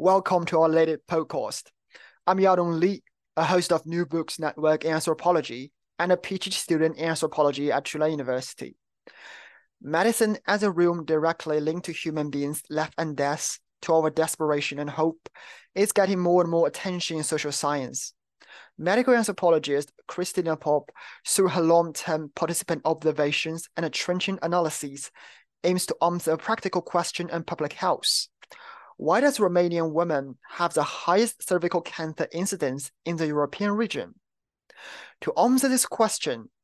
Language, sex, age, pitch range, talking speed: English, male, 20-39, 155-180 Hz, 145 wpm